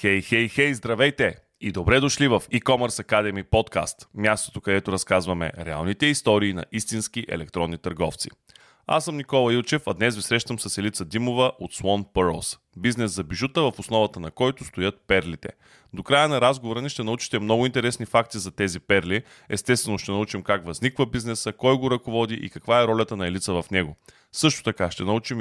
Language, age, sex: Bulgarian, 20-39, male